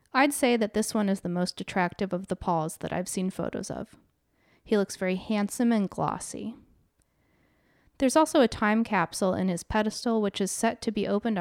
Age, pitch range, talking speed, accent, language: 30-49, 175-235 Hz, 195 wpm, American, English